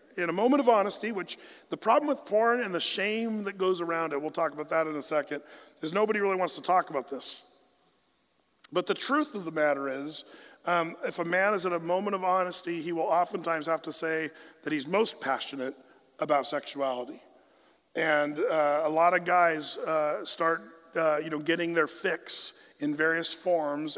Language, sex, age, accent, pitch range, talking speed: English, male, 40-59, American, 155-185 Hz, 195 wpm